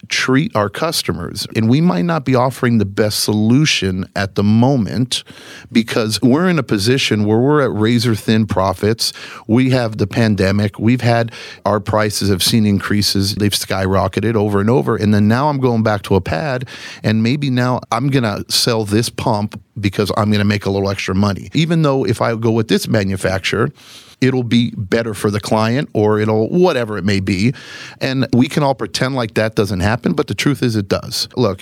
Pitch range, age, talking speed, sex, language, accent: 95-115 Hz, 50-69, 195 wpm, male, English, American